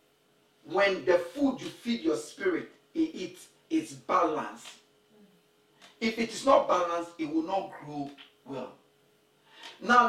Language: English